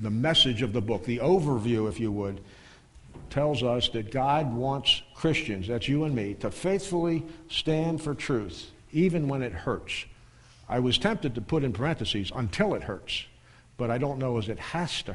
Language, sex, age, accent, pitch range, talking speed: English, male, 60-79, American, 110-135 Hz, 185 wpm